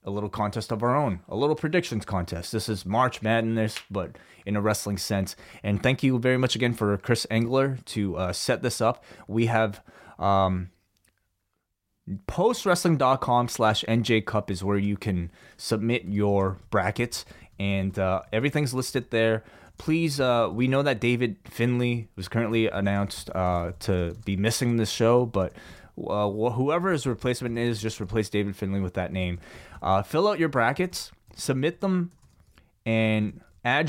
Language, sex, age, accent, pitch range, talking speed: English, male, 20-39, American, 100-125 Hz, 160 wpm